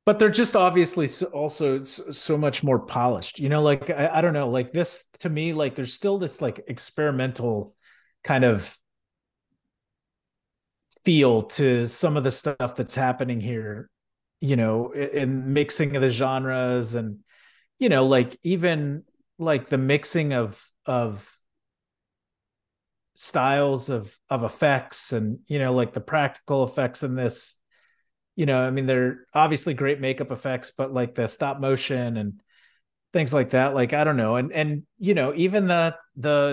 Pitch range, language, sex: 130-165 Hz, English, male